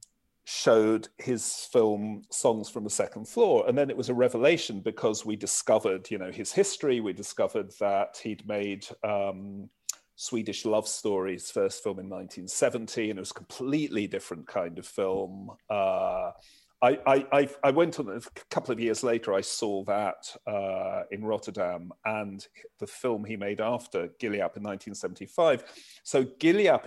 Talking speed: 160 wpm